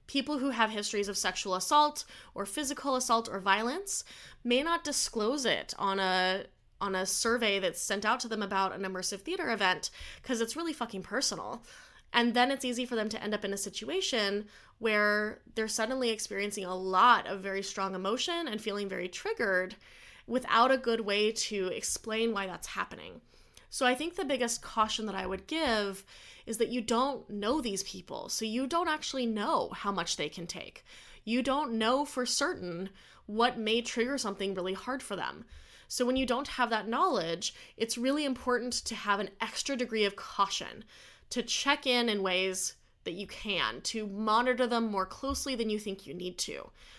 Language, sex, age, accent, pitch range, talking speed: English, female, 10-29, American, 195-250 Hz, 190 wpm